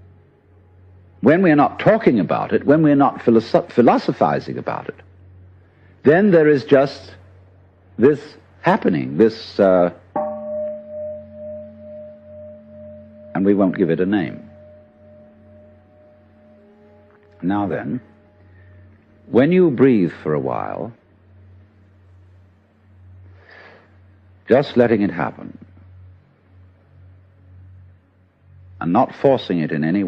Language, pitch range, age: English, 90-115 Hz, 60-79